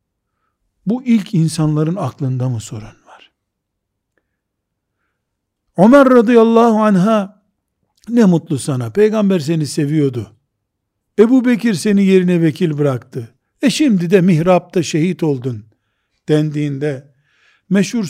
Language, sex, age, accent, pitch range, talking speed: Turkish, male, 60-79, native, 125-200 Hz, 100 wpm